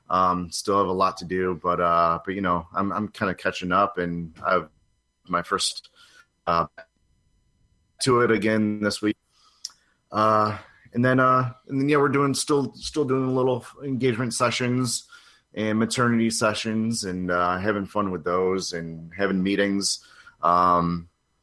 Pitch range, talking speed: 90-120 Hz, 160 wpm